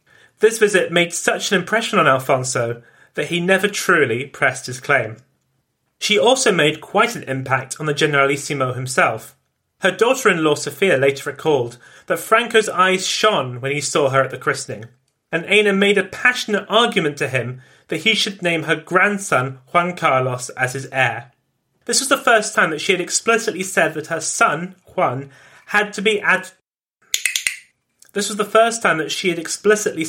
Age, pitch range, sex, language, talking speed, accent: 30-49, 135-205 Hz, male, English, 175 wpm, British